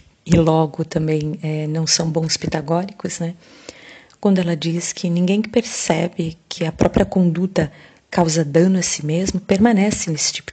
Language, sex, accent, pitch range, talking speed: Portuguese, female, Brazilian, 160-185 Hz, 160 wpm